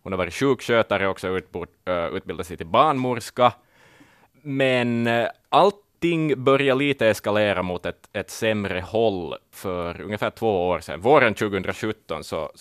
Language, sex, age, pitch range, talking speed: Swedish, male, 20-39, 85-115 Hz, 130 wpm